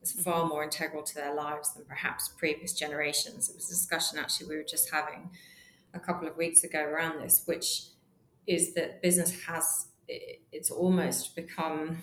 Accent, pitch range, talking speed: British, 155-175 Hz, 170 wpm